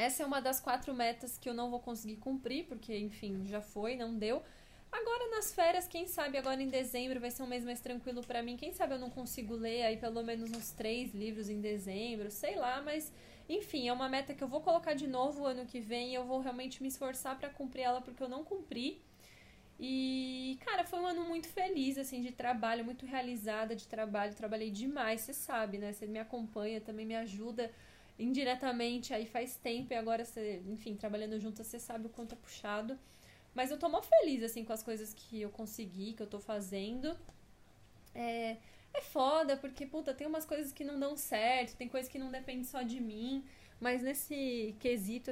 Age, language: 10-29, Portuguese